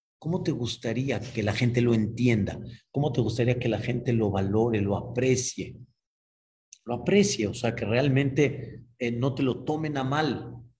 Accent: Mexican